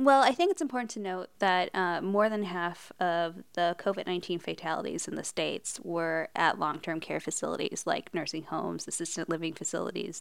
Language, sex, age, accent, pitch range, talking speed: English, female, 20-39, American, 180-210 Hz, 190 wpm